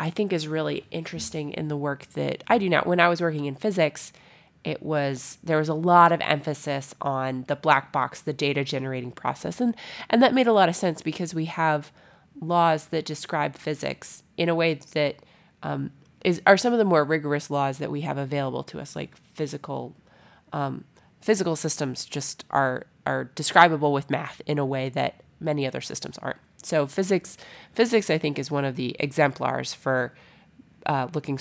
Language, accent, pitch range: English, American, 140-170 Hz